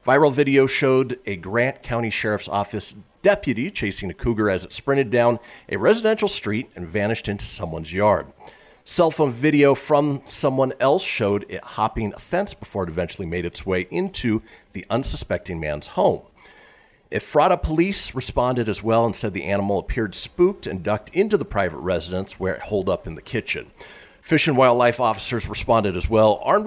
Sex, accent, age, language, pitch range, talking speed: male, American, 40-59, English, 95-140 Hz, 175 wpm